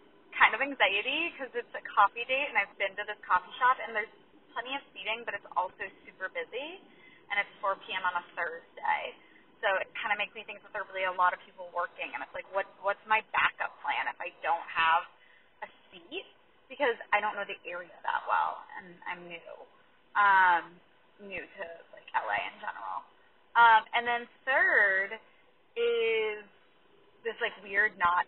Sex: female